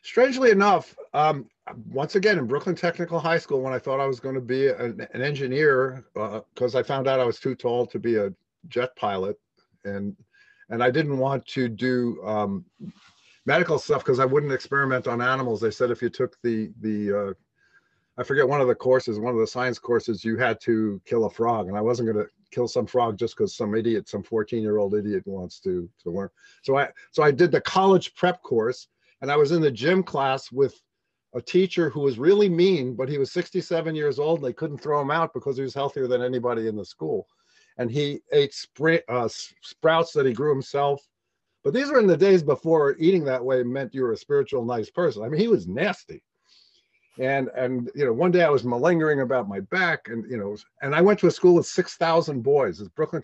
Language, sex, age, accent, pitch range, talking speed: English, male, 50-69, American, 120-170 Hz, 225 wpm